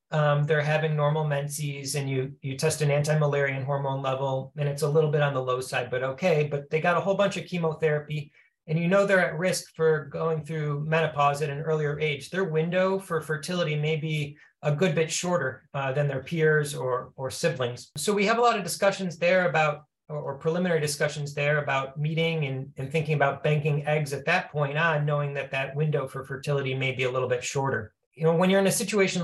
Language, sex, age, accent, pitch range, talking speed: English, male, 30-49, American, 140-165 Hz, 220 wpm